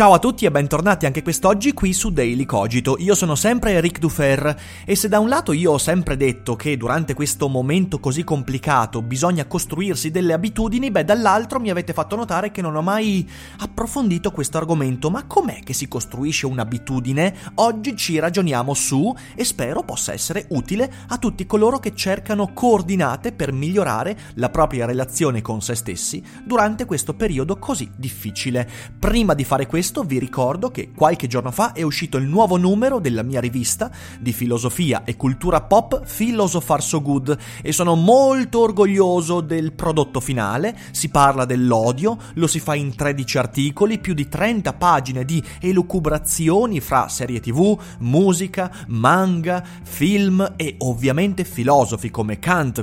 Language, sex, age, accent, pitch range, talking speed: Italian, male, 30-49, native, 130-195 Hz, 160 wpm